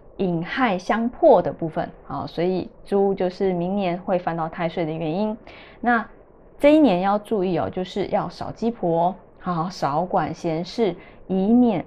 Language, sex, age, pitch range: Chinese, female, 20-39, 175-225 Hz